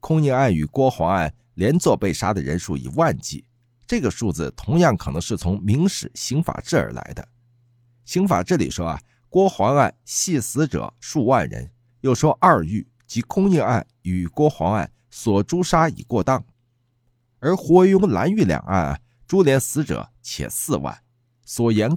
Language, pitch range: Chinese, 100-155 Hz